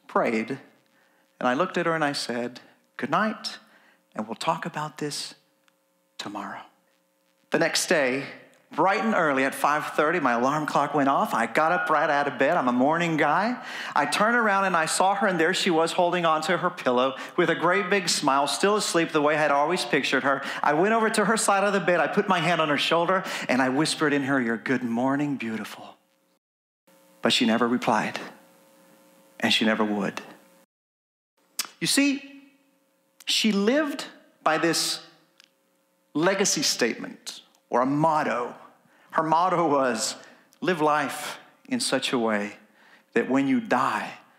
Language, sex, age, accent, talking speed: English, male, 40-59, American, 170 wpm